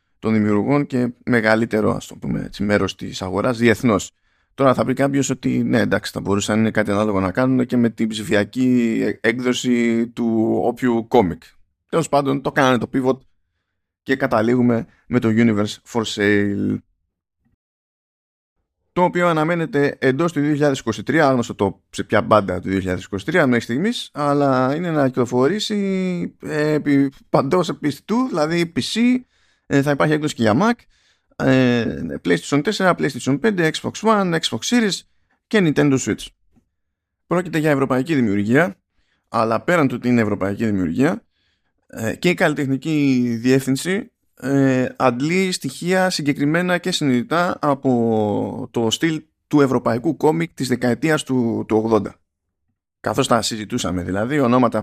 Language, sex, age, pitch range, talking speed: Greek, male, 20-39, 105-145 Hz, 130 wpm